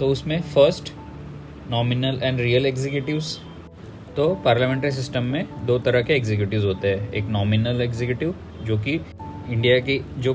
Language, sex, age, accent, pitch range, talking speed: Hindi, male, 20-39, native, 105-130 Hz, 145 wpm